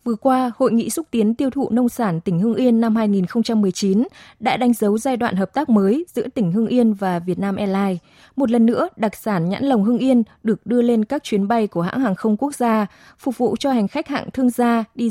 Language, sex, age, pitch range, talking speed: Vietnamese, female, 20-39, 200-250 Hz, 240 wpm